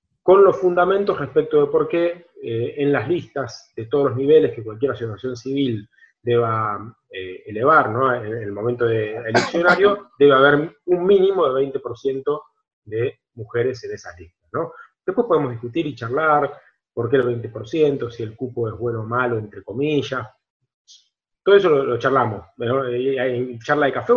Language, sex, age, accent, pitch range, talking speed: Spanish, male, 30-49, Argentinian, 120-165 Hz, 170 wpm